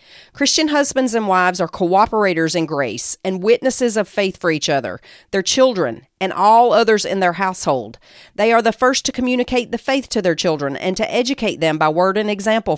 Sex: female